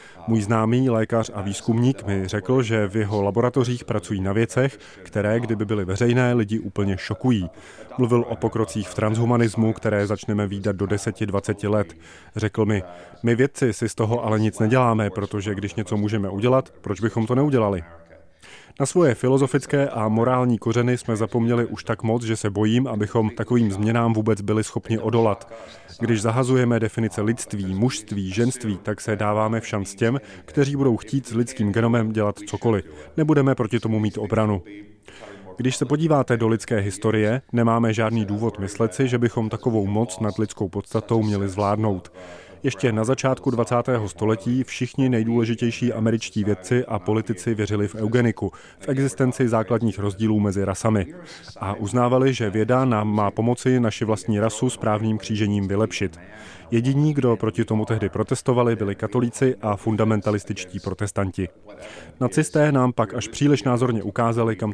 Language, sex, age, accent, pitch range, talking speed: Czech, male, 30-49, native, 105-120 Hz, 155 wpm